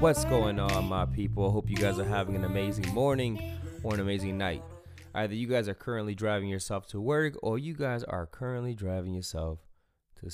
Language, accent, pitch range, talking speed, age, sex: English, American, 95-125 Hz, 205 wpm, 20-39, male